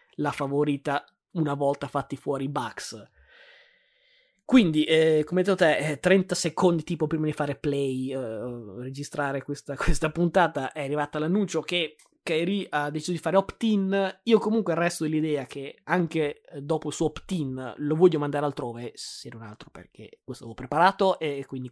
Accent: native